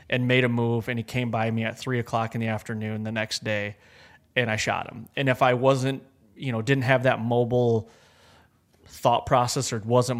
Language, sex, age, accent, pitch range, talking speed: English, male, 20-39, American, 115-130 Hz, 210 wpm